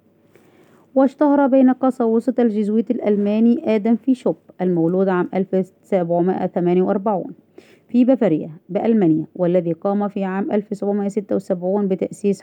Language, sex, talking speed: Arabic, female, 100 wpm